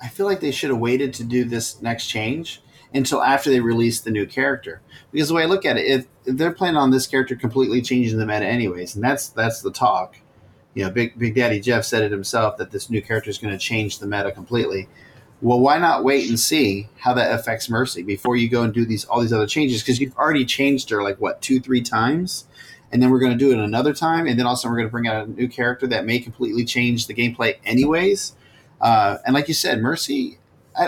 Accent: American